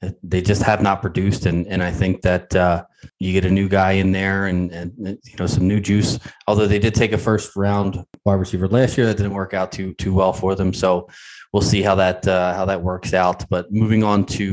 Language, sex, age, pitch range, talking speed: English, male, 20-39, 95-110 Hz, 245 wpm